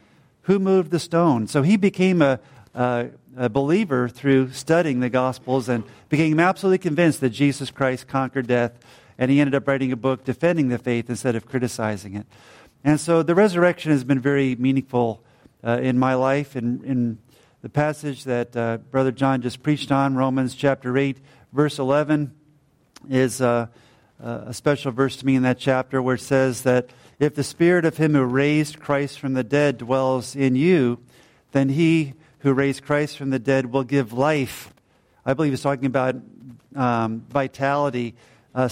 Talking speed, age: 175 wpm, 50-69